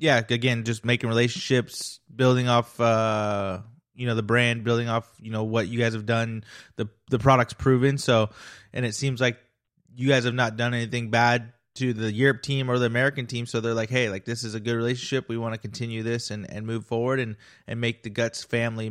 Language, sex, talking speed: English, male, 220 wpm